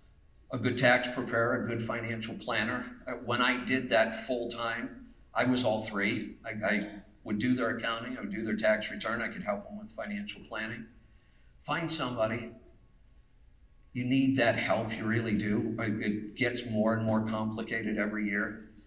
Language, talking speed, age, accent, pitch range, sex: English, 170 wpm, 50-69, American, 105-125 Hz, male